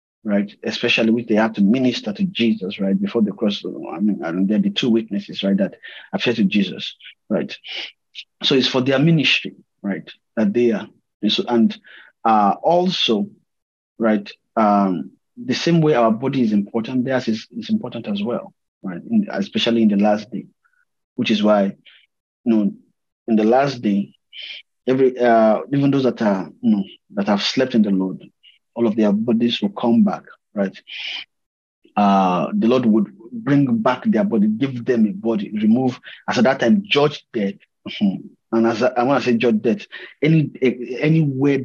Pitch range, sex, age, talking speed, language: 105-150 Hz, male, 30-49, 180 wpm, English